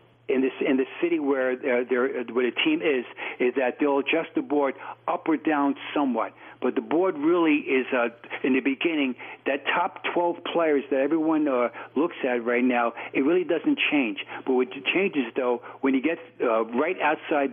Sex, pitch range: male, 130-160 Hz